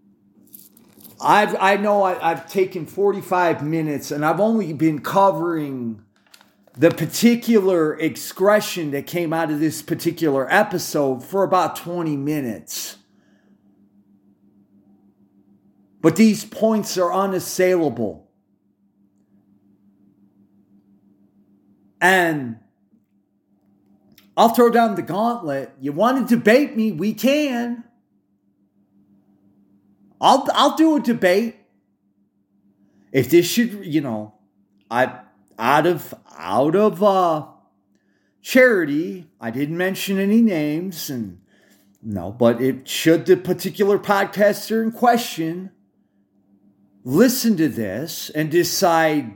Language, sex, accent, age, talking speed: English, male, American, 40-59, 100 wpm